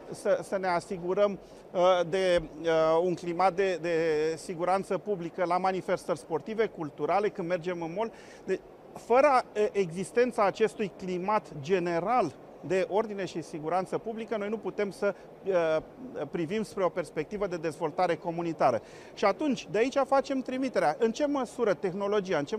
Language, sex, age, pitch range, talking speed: Romanian, male, 40-59, 175-215 Hz, 140 wpm